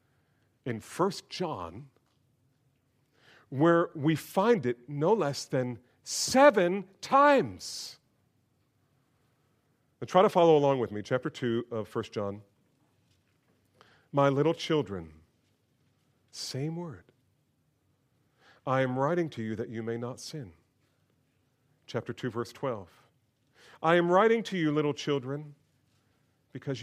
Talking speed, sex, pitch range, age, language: 115 wpm, male, 120-165 Hz, 40-59, English